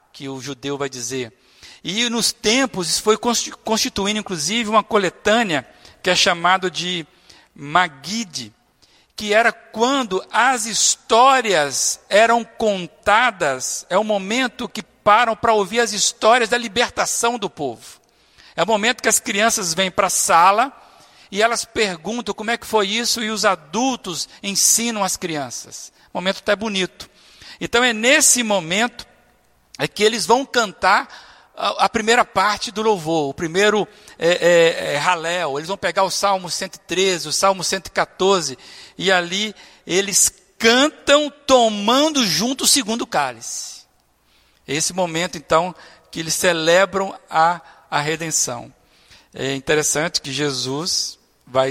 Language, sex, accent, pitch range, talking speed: Portuguese, male, Brazilian, 155-225 Hz, 135 wpm